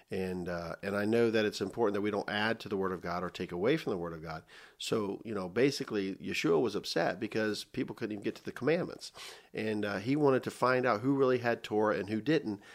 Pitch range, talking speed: 100-125 Hz, 255 wpm